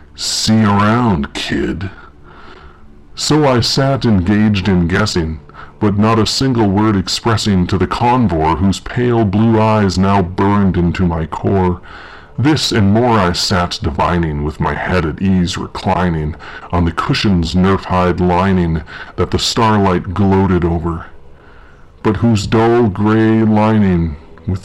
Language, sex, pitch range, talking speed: English, female, 85-110 Hz, 135 wpm